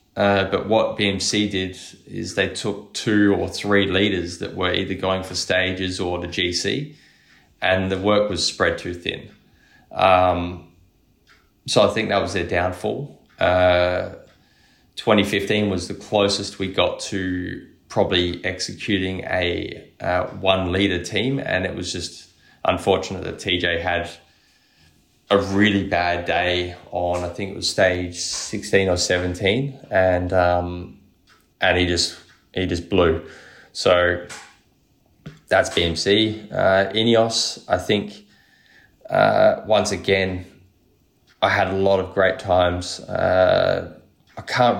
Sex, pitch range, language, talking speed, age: male, 90-100 Hz, English, 135 wpm, 20-39